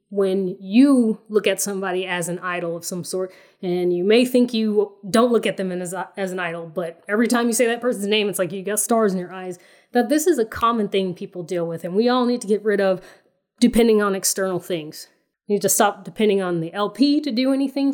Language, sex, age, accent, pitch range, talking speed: English, female, 20-39, American, 185-235 Hz, 240 wpm